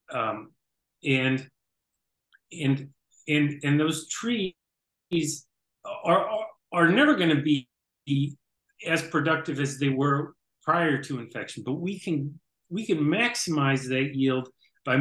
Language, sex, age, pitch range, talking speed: English, male, 40-59, 130-160 Hz, 120 wpm